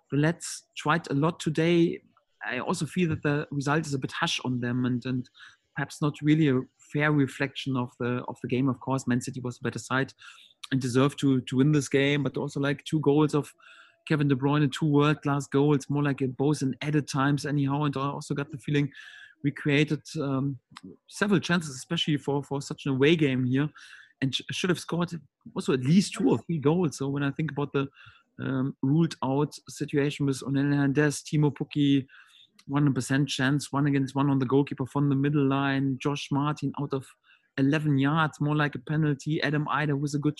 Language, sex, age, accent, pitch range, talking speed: English, male, 30-49, German, 135-150 Hz, 205 wpm